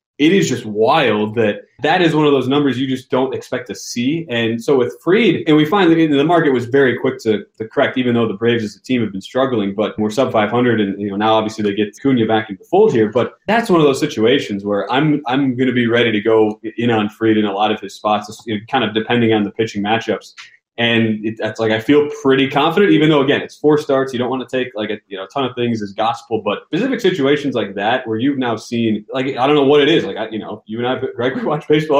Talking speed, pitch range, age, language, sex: 275 wpm, 110-140 Hz, 20-39, English, male